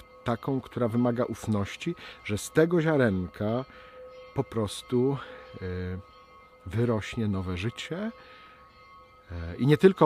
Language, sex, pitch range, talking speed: Polish, male, 95-130 Hz, 95 wpm